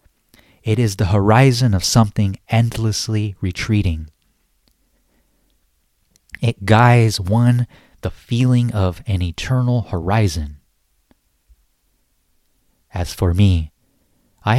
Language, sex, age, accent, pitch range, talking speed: English, male, 30-49, American, 90-115 Hz, 85 wpm